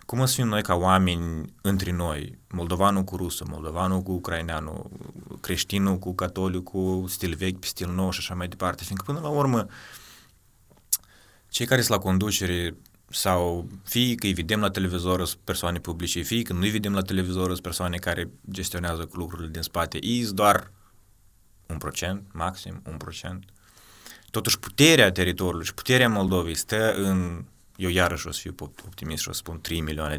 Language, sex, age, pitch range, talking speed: Romanian, male, 20-39, 85-105 Hz, 165 wpm